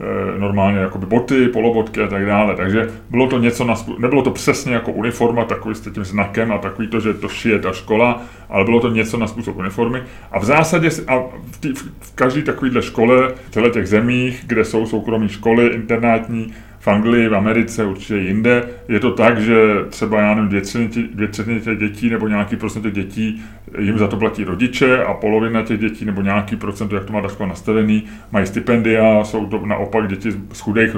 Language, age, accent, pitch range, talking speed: Czech, 30-49, native, 100-115 Hz, 195 wpm